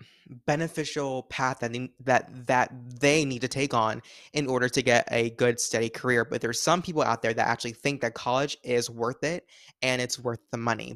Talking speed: 205 wpm